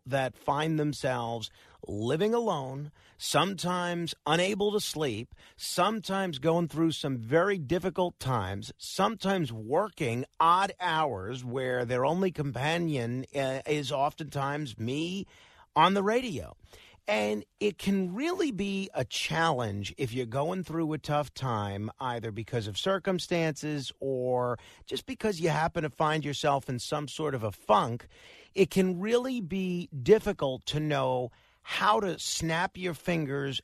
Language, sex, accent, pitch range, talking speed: English, male, American, 130-180 Hz, 130 wpm